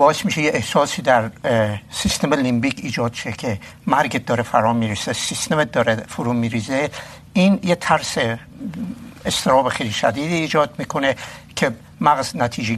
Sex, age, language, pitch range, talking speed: male, 60-79, Urdu, 115-150 Hz, 135 wpm